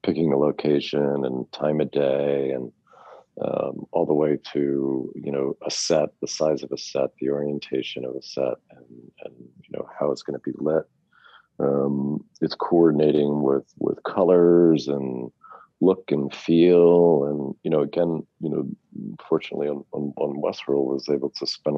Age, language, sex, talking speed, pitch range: 40-59, English, male, 170 wpm, 70-75 Hz